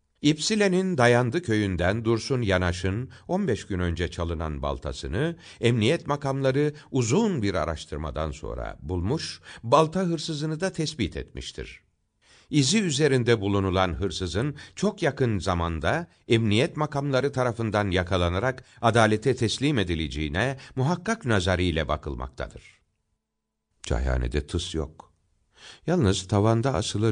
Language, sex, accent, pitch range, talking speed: Turkish, male, native, 85-135 Hz, 100 wpm